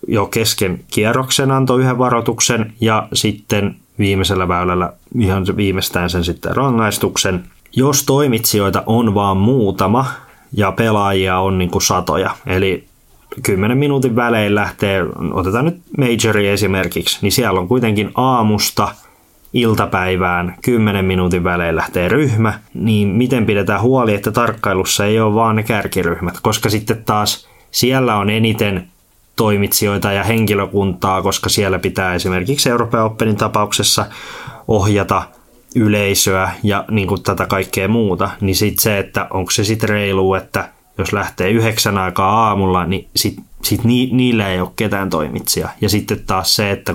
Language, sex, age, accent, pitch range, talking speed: Finnish, male, 20-39, native, 95-115 Hz, 135 wpm